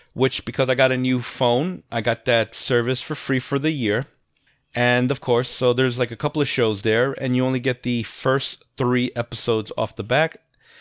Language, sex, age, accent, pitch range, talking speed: English, male, 30-49, American, 115-140 Hz, 210 wpm